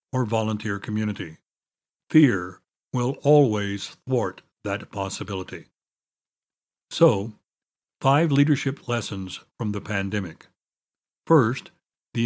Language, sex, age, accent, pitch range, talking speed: English, male, 60-79, American, 110-140 Hz, 90 wpm